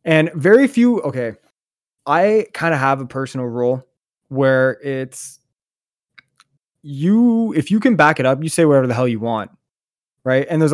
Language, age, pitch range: English, 20-39, 125-150 Hz